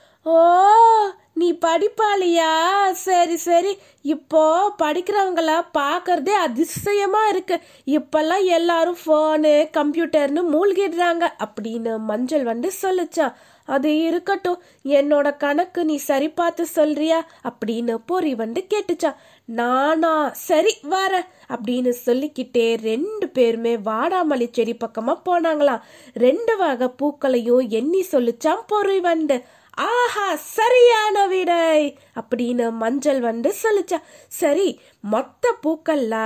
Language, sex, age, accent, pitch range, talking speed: Tamil, female, 20-39, native, 245-355 Hz, 90 wpm